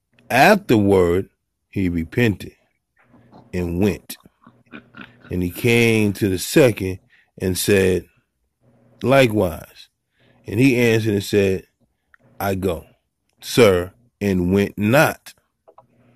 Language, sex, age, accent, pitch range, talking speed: English, male, 30-49, American, 90-105 Hz, 95 wpm